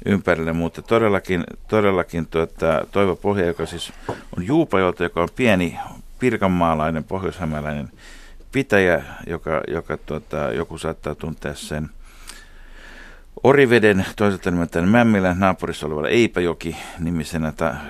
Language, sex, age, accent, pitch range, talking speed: Finnish, male, 60-79, native, 80-95 Hz, 105 wpm